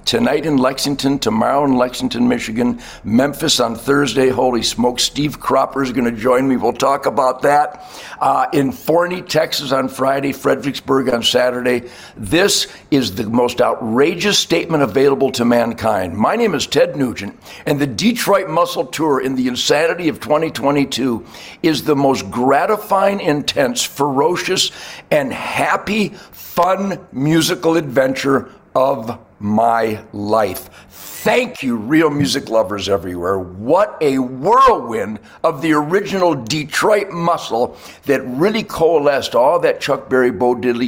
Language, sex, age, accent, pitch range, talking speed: English, male, 60-79, American, 110-150 Hz, 140 wpm